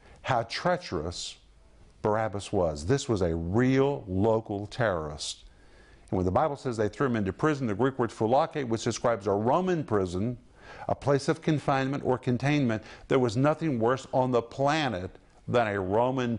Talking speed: 165 wpm